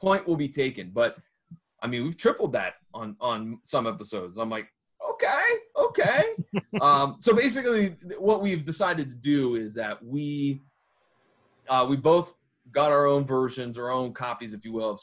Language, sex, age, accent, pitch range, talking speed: English, male, 30-49, American, 115-150 Hz, 170 wpm